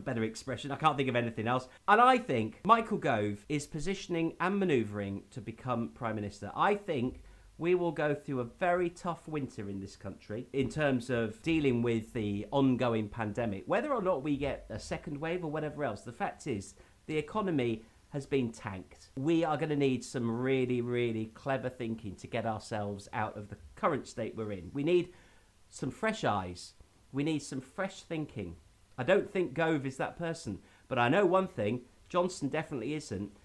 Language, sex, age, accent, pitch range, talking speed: English, male, 40-59, British, 105-155 Hz, 190 wpm